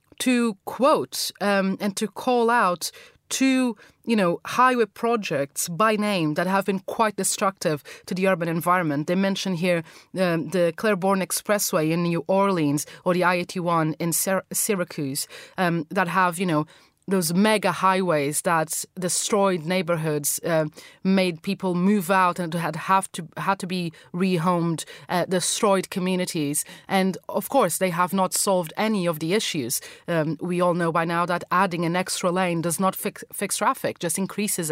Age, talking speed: 30-49, 160 wpm